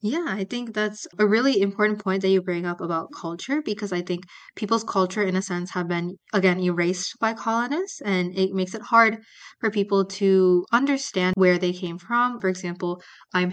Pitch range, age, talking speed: 180-200 Hz, 20-39, 195 wpm